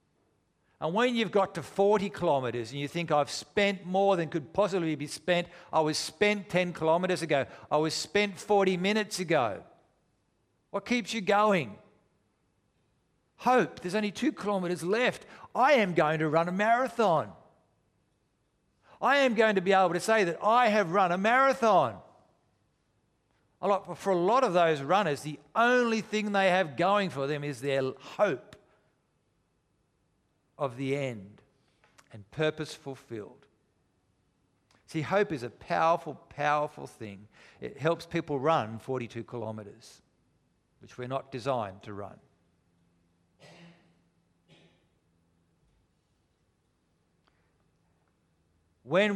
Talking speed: 125 wpm